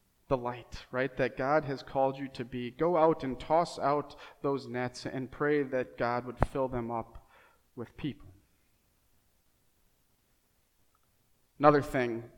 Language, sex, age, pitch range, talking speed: English, male, 30-49, 120-145 Hz, 140 wpm